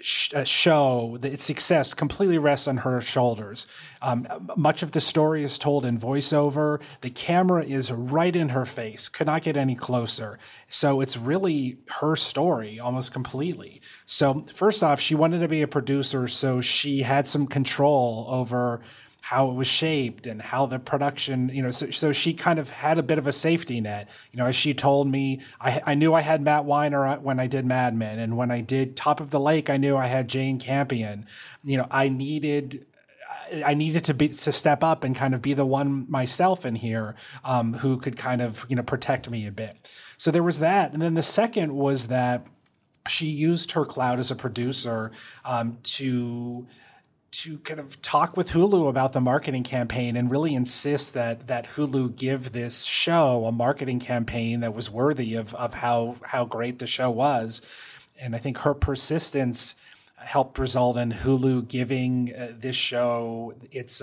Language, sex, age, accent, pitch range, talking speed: English, male, 30-49, American, 125-145 Hz, 190 wpm